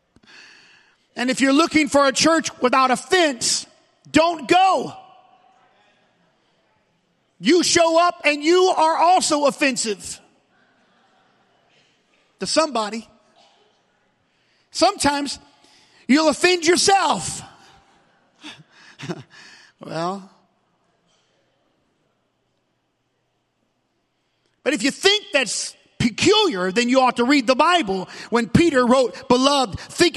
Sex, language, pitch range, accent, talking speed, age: male, English, 225-320 Hz, American, 90 wpm, 40-59